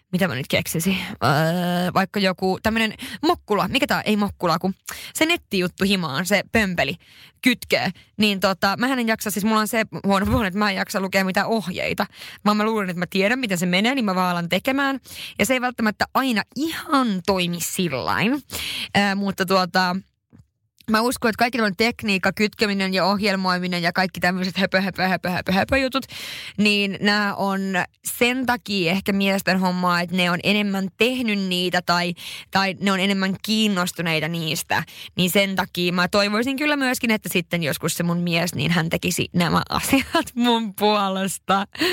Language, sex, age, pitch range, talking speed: Finnish, female, 20-39, 180-220 Hz, 175 wpm